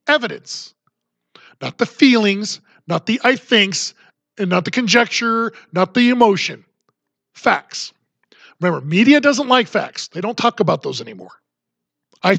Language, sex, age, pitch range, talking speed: English, male, 40-59, 170-225 Hz, 135 wpm